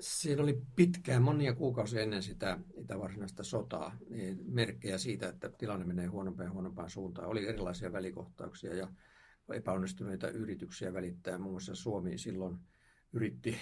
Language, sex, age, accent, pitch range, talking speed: Finnish, male, 50-69, native, 90-105 Hz, 140 wpm